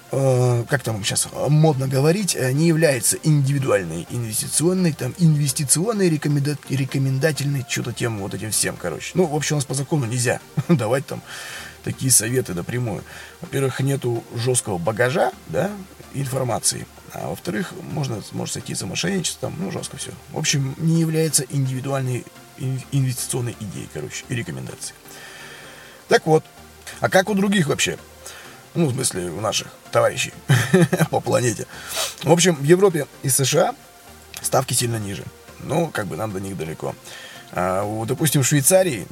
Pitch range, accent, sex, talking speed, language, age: 120-160 Hz, native, male, 145 wpm, Russian, 20-39